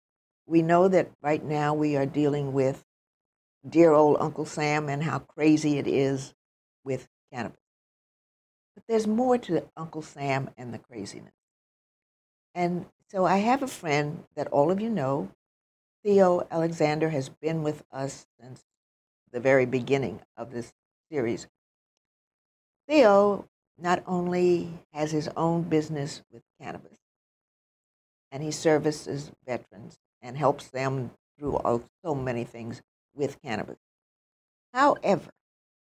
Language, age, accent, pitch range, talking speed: English, 60-79, American, 135-170 Hz, 125 wpm